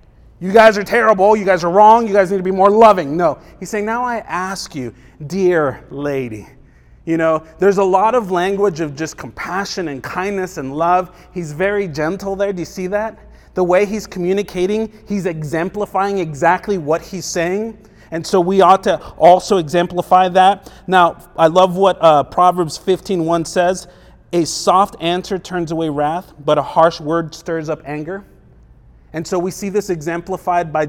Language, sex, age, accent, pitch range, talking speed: English, male, 30-49, American, 160-195 Hz, 180 wpm